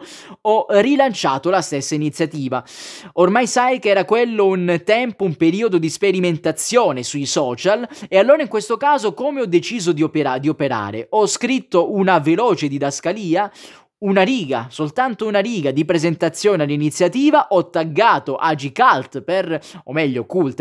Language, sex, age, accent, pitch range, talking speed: Italian, male, 20-39, native, 150-200 Hz, 145 wpm